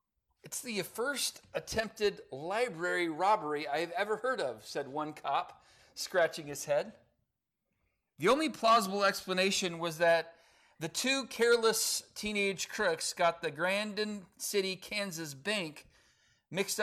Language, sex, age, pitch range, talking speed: English, male, 40-59, 150-205 Hz, 125 wpm